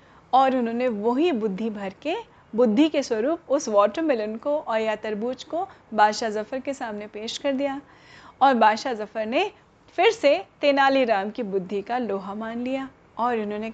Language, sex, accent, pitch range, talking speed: Hindi, female, native, 210-270 Hz, 170 wpm